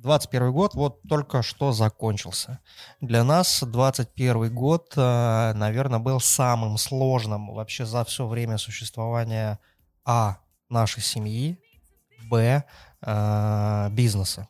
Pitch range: 110-135 Hz